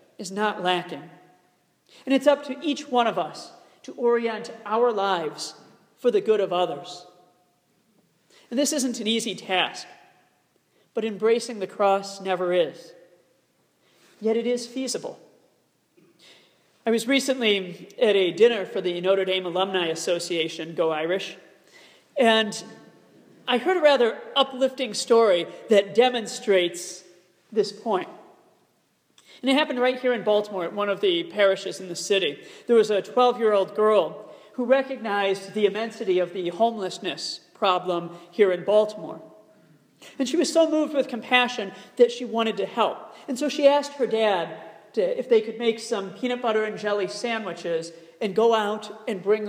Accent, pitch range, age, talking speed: American, 190-245 Hz, 40-59, 150 wpm